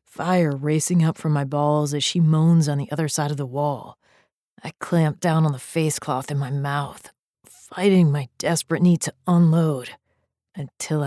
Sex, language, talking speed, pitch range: female, English, 180 wpm, 135-160 Hz